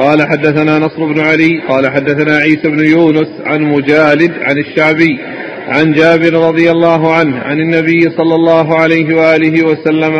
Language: Arabic